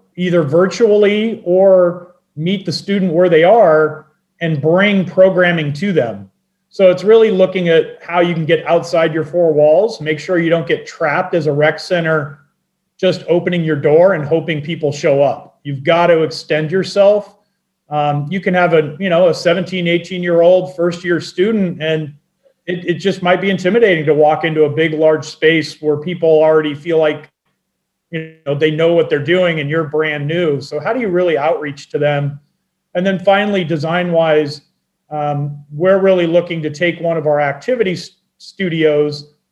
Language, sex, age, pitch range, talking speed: English, male, 40-59, 150-180 Hz, 180 wpm